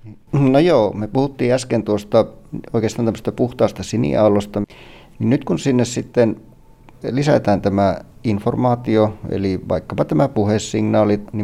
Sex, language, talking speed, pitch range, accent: male, Finnish, 115 wpm, 100-115 Hz, native